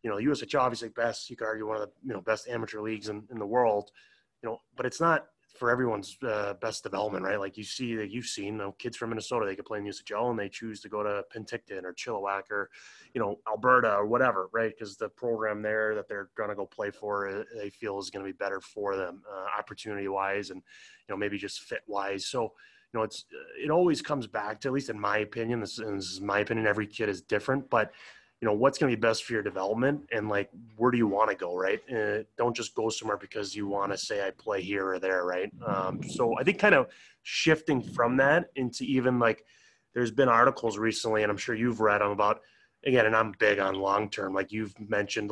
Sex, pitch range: male, 100-120 Hz